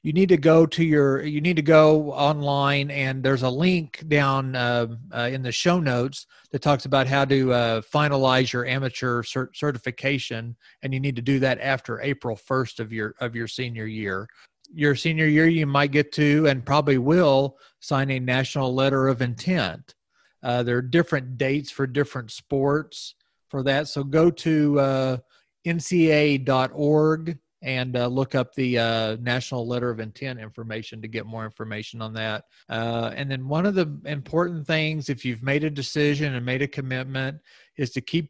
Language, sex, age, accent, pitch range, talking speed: English, male, 40-59, American, 120-145 Hz, 180 wpm